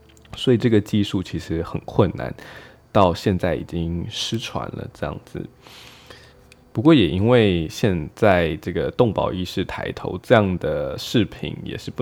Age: 20-39